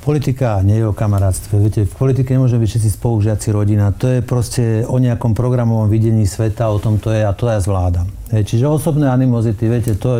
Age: 50-69